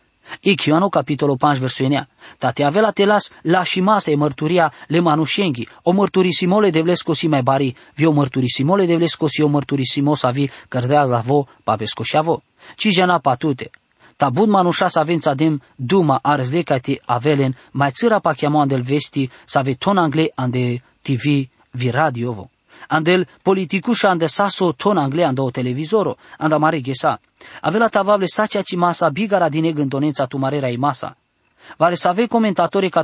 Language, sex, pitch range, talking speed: English, male, 145-185 Hz, 160 wpm